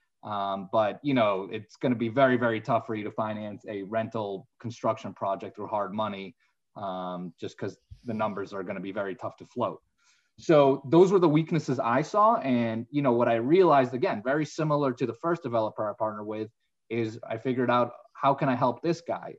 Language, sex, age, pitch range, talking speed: English, male, 20-39, 110-135 Hz, 210 wpm